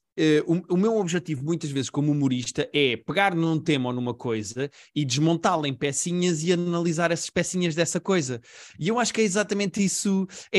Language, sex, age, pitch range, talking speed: Portuguese, male, 20-39, 140-175 Hz, 185 wpm